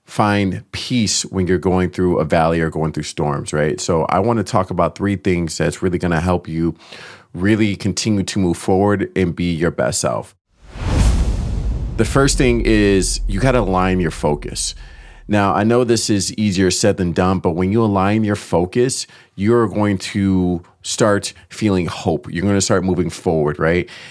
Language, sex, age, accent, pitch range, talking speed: English, male, 30-49, American, 85-105 Hz, 185 wpm